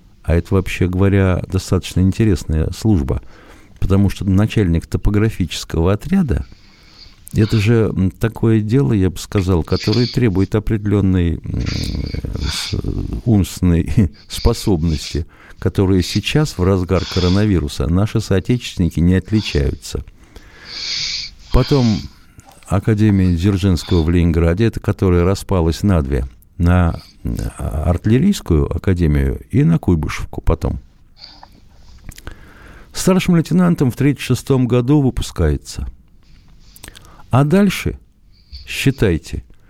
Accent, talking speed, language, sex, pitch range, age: native, 90 wpm, Russian, male, 85-115 Hz, 50-69